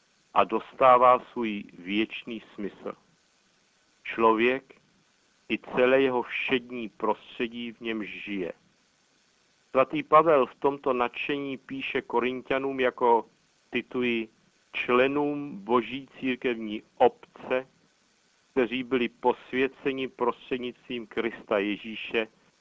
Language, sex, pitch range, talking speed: Czech, male, 110-130 Hz, 90 wpm